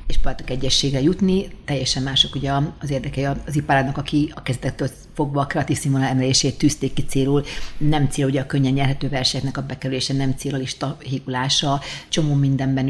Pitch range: 135-150 Hz